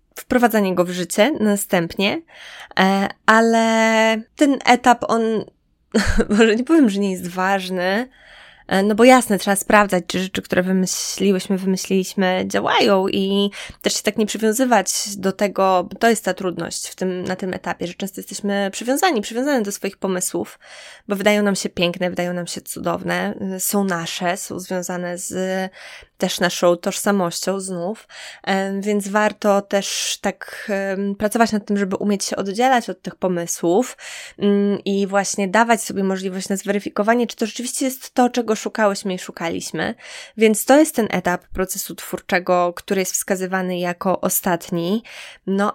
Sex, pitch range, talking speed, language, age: female, 185-210 Hz, 150 wpm, Polish, 20-39